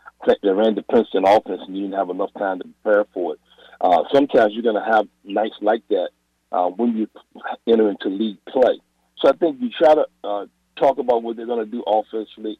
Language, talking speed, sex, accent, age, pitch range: English, 220 wpm, male, American, 50-69, 100-155 Hz